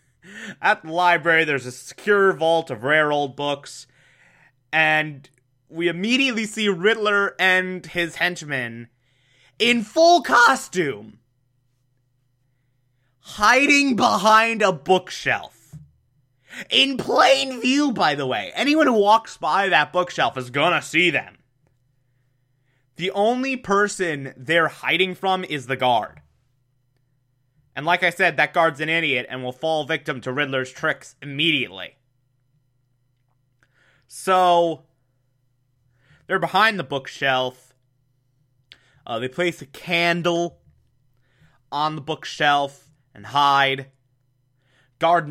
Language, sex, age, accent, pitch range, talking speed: English, male, 30-49, American, 130-180 Hz, 110 wpm